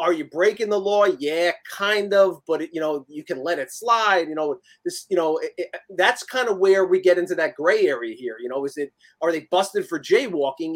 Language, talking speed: English, 230 wpm